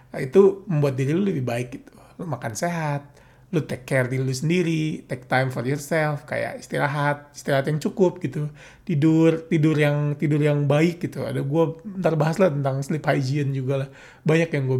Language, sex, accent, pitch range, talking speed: Indonesian, male, native, 130-165 Hz, 190 wpm